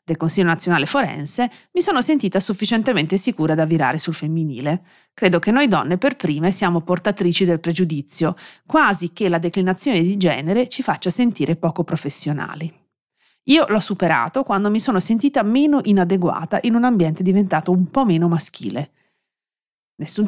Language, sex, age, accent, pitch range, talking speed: Italian, female, 30-49, native, 160-210 Hz, 155 wpm